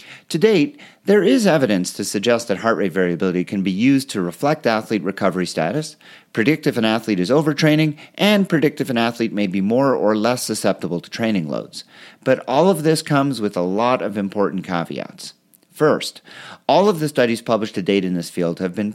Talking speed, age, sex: 200 wpm, 40-59, male